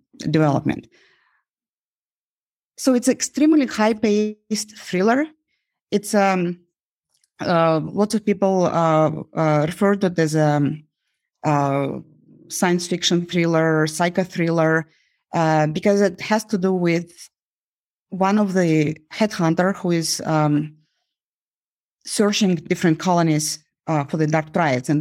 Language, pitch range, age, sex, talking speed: English, 155-185 Hz, 30-49, female, 120 wpm